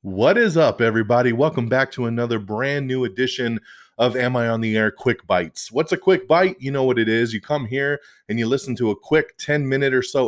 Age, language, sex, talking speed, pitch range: 30-49, English, male, 240 wpm, 105-135 Hz